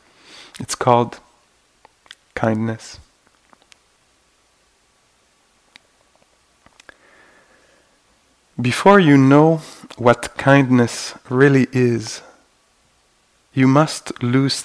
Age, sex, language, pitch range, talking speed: 50-69, male, English, 120-140 Hz, 55 wpm